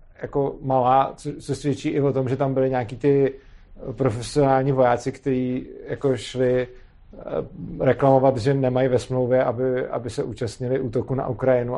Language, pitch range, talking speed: Czech, 130-165 Hz, 155 wpm